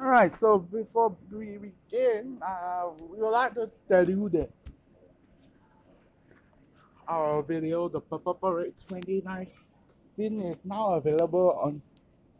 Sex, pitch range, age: male, 165-215 Hz, 20-39